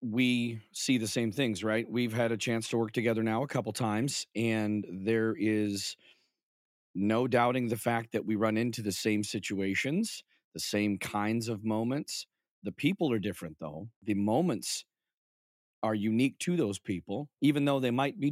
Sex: male